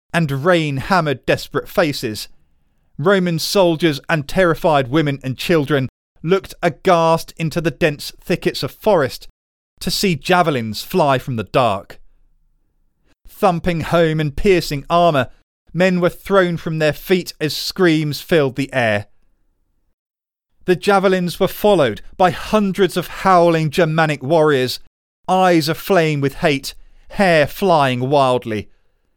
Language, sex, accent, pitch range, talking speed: English, male, British, 135-185 Hz, 120 wpm